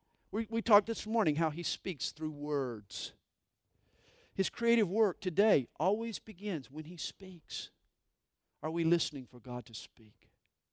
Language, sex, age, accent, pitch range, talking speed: English, male, 50-69, American, 140-215 Hz, 140 wpm